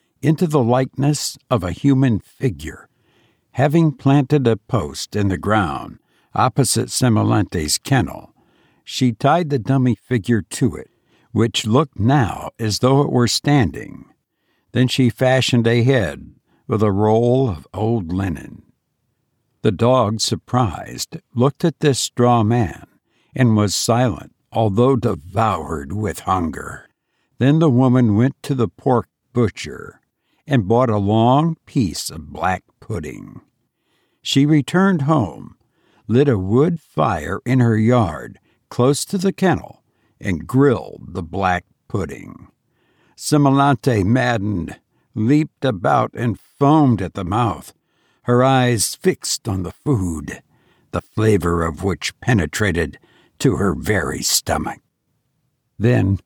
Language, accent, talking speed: English, American, 125 wpm